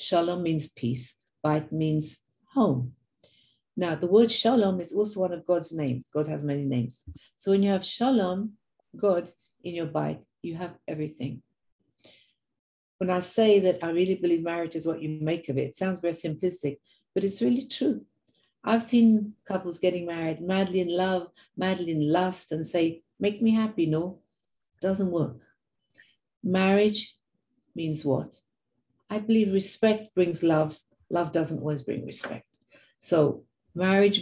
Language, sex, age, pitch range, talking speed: English, female, 60-79, 155-195 Hz, 155 wpm